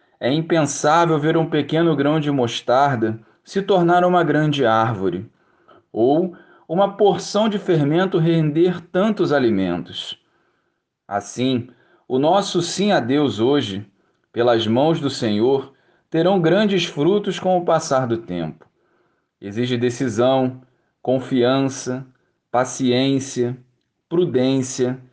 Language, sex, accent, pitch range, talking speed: Portuguese, male, Brazilian, 120-175 Hz, 105 wpm